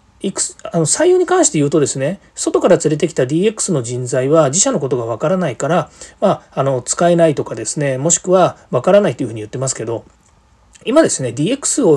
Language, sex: Japanese, male